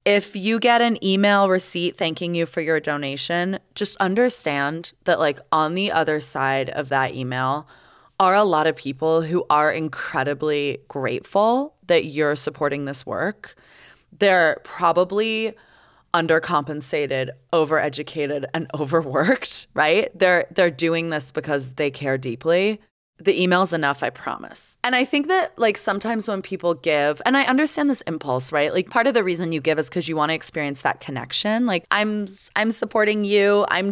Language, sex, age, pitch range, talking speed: English, female, 20-39, 150-200 Hz, 165 wpm